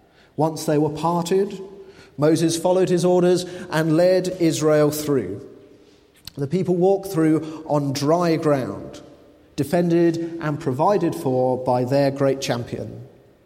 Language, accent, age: English, British, 40-59